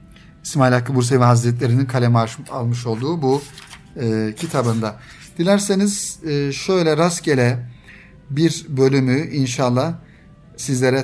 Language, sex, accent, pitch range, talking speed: Turkish, male, native, 125-165 Hz, 85 wpm